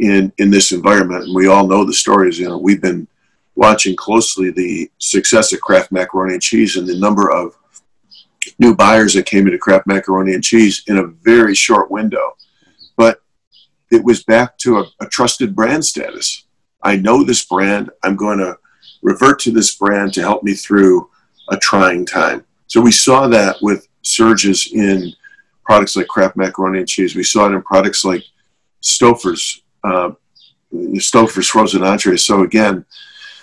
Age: 50-69